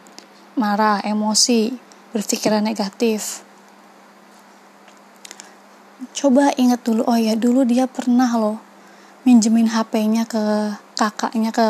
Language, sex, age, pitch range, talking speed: Indonesian, female, 20-39, 225-250 Hz, 90 wpm